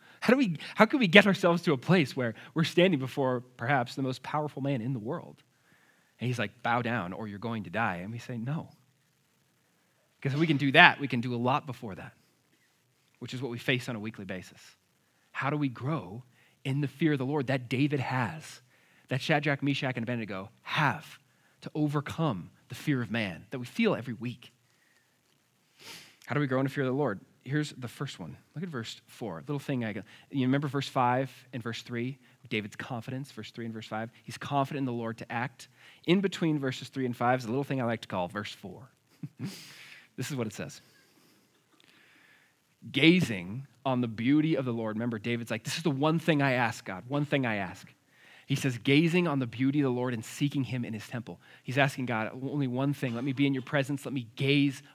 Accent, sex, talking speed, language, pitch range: American, male, 225 wpm, English, 120-145 Hz